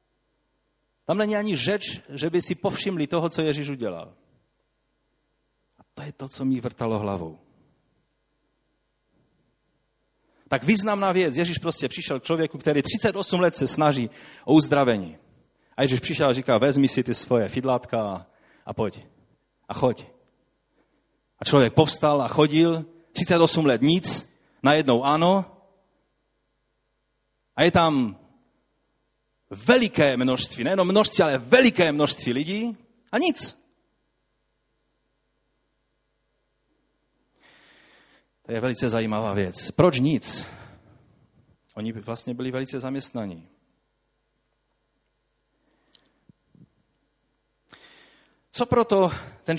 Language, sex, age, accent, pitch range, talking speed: Czech, male, 30-49, native, 125-170 Hz, 105 wpm